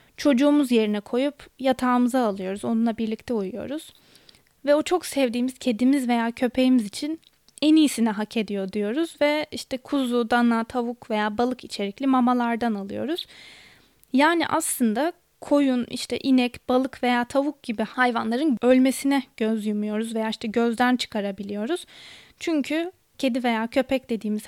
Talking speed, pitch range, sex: 130 wpm, 220-265 Hz, female